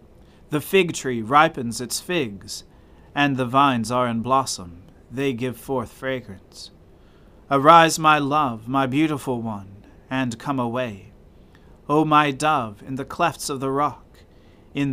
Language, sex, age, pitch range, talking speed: English, male, 40-59, 100-140 Hz, 140 wpm